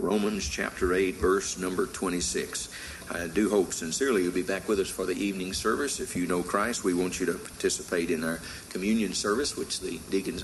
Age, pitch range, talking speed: 50-69, 85-95 Hz, 200 wpm